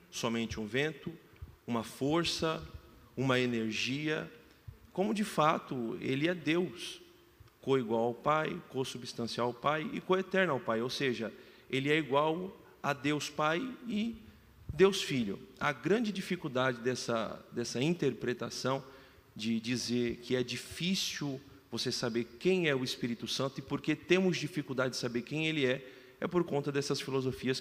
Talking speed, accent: 145 wpm, Brazilian